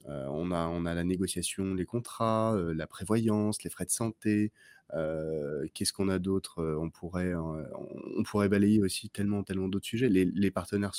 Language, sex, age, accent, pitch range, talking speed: French, male, 30-49, French, 90-120 Hz, 190 wpm